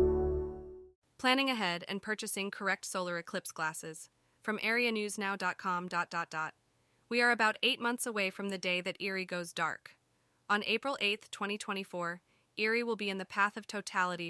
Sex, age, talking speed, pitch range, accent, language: female, 20-39, 160 wpm, 175-220 Hz, American, English